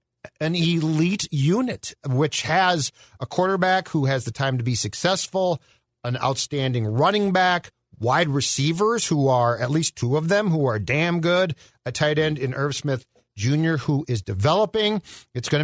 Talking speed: 165 wpm